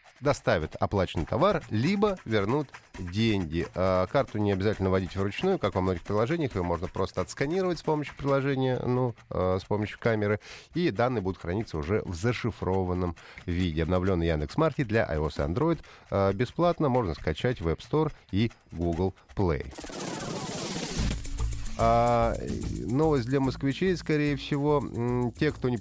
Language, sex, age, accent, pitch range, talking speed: Russian, male, 30-49, native, 95-125 Hz, 135 wpm